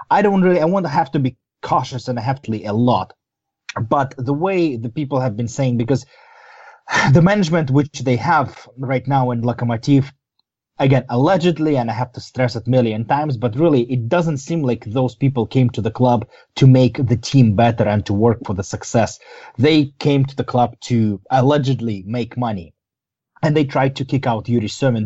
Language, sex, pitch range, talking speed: English, male, 120-145 Hz, 205 wpm